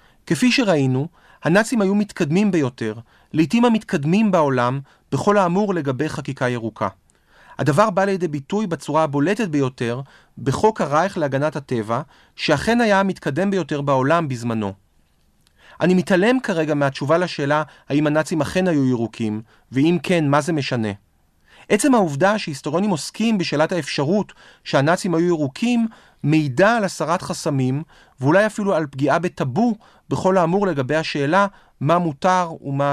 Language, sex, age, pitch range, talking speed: Hebrew, male, 40-59, 135-185 Hz, 130 wpm